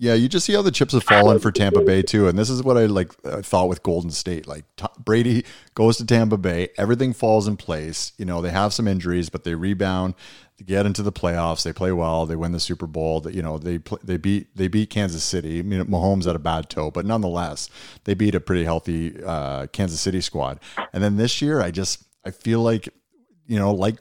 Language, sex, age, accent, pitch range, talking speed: English, male, 30-49, American, 85-110 Hz, 245 wpm